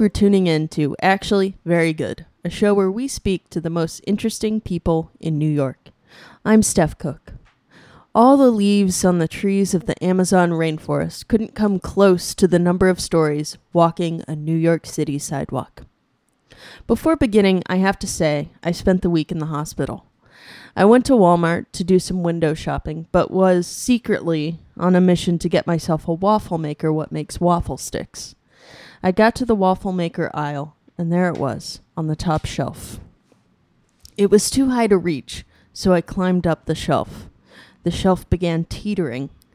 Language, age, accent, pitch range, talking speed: English, 20-39, American, 160-195 Hz, 175 wpm